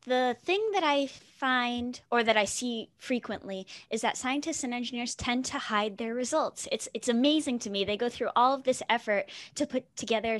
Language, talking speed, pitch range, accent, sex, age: English, 200 wpm, 195-245 Hz, American, female, 10-29